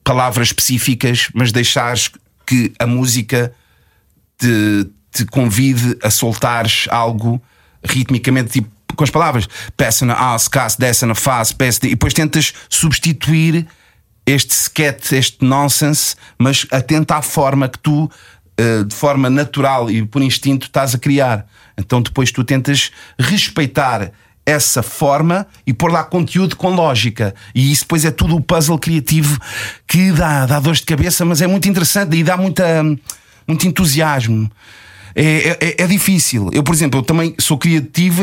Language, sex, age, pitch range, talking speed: Portuguese, male, 40-59, 120-165 Hz, 140 wpm